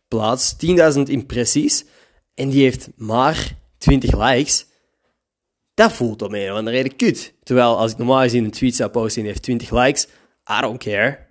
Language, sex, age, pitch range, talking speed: Dutch, male, 20-39, 110-130 Hz, 170 wpm